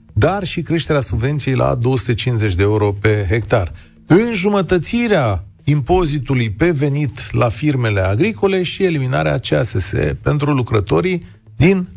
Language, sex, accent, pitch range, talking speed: Romanian, male, native, 115-160 Hz, 115 wpm